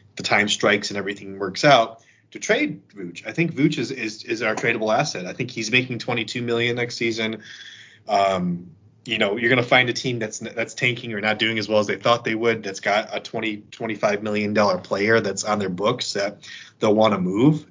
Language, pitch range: English, 100-125 Hz